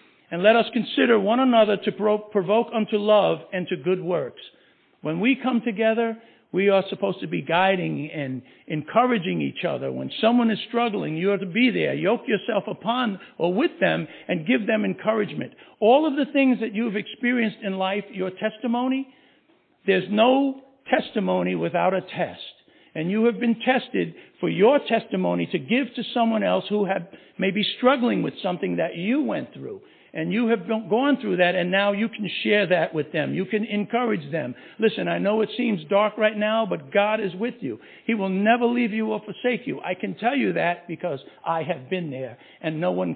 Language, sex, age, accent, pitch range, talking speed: English, male, 60-79, American, 185-235 Hz, 195 wpm